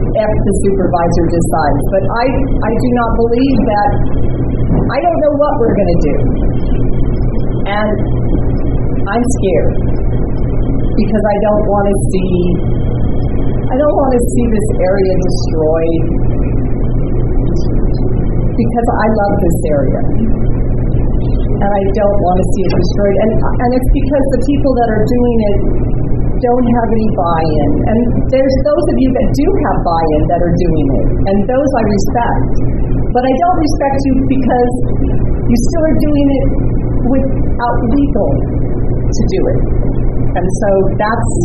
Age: 40-59